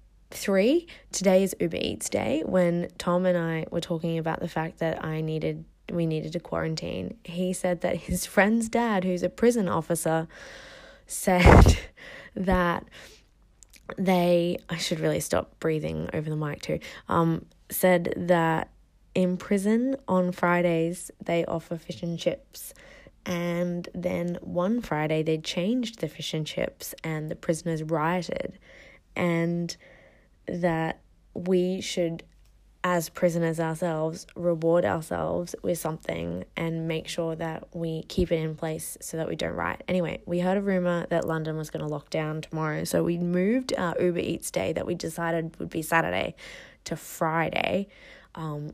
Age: 20-39